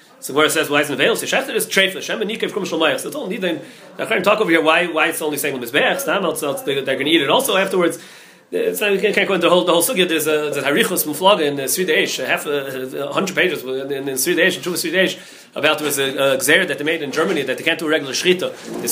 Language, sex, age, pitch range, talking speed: English, male, 30-49, 145-185 Hz, 240 wpm